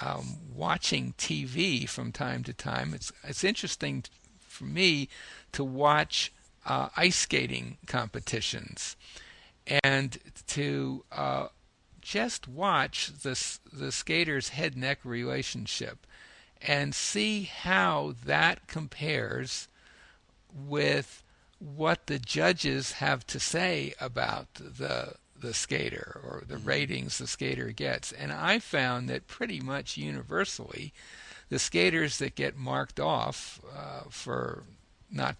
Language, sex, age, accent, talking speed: English, male, 60-79, American, 115 wpm